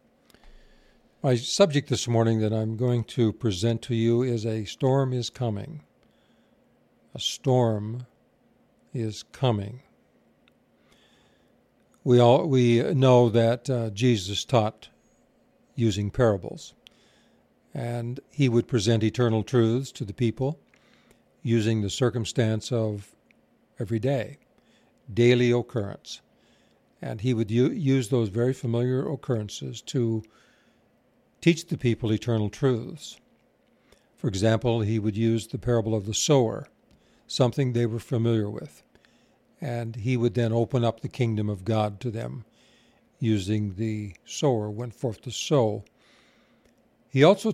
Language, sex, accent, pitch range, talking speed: English, male, American, 110-125 Hz, 125 wpm